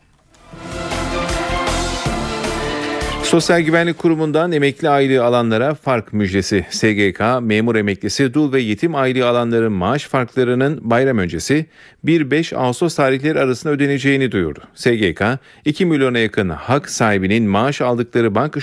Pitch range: 105-140 Hz